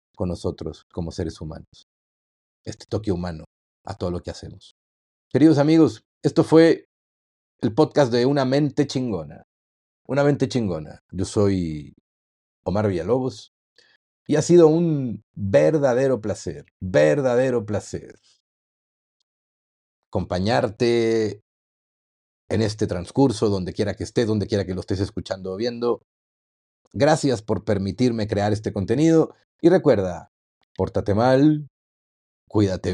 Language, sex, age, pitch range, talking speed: Spanish, male, 40-59, 100-150 Hz, 120 wpm